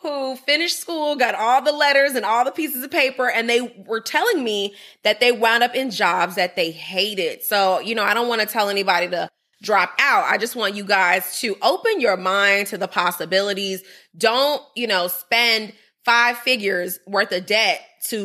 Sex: female